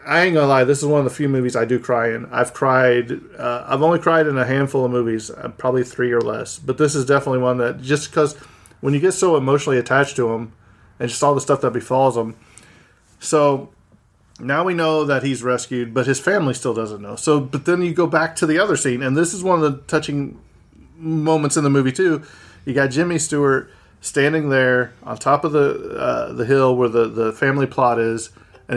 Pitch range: 115-140 Hz